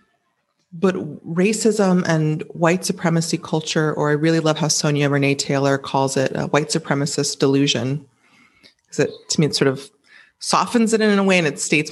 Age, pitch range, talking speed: 30-49, 145-195 Hz, 175 wpm